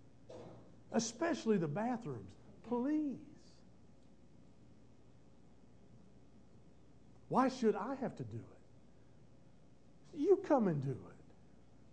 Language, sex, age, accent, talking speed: English, male, 50-69, American, 80 wpm